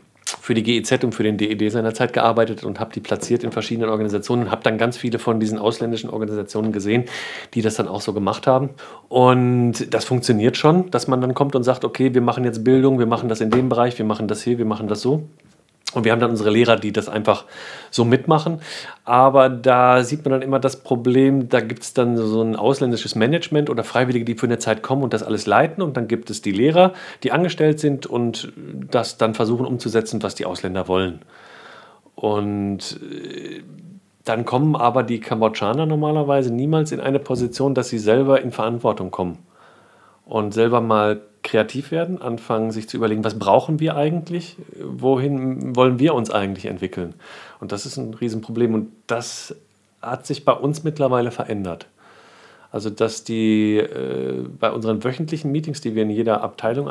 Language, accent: German, German